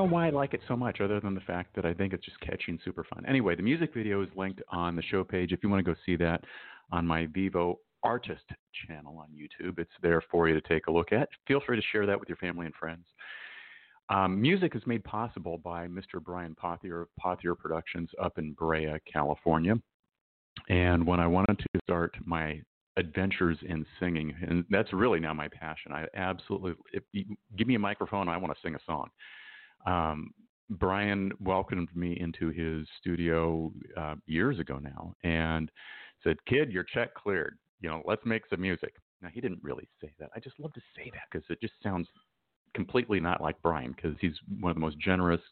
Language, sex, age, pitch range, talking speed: English, male, 40-59, 85-100 Hz, 205 wpm